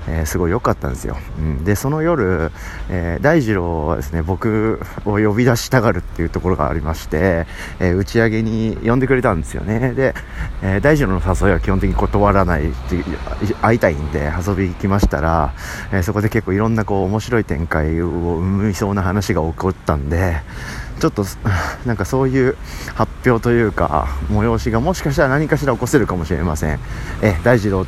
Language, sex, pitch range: Japanese, male, 80-110 Hz